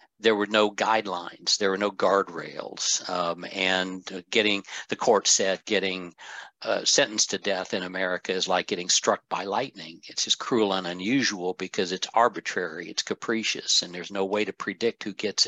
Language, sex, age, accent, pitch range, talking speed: English, male, 60-79, American, 90-105 Hz, 180 wpm